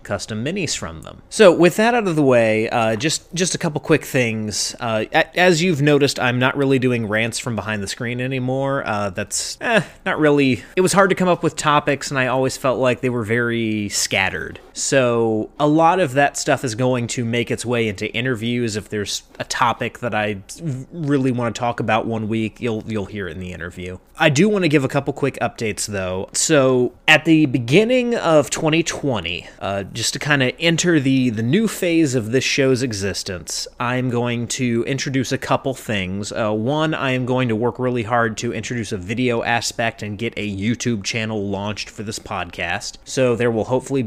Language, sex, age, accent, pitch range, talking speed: English, male, 30-49, American, 110-140 Hz, 205 wpm